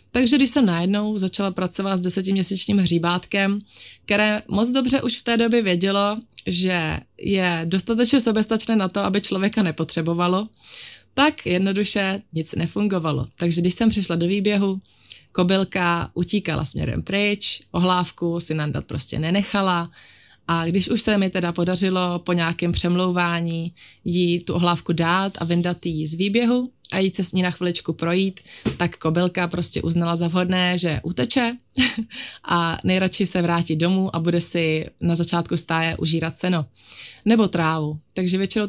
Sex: female